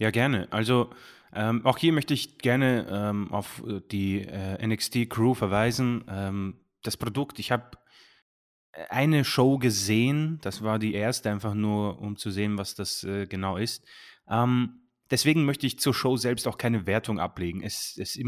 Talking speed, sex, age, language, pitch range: 160 wpm, male, 30-49, German, 105-130 Hz